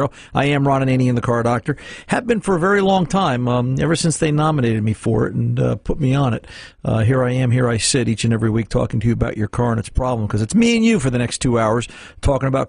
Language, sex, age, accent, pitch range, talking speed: English, male, 50-69, American, 115-155 Hz, 295 wpm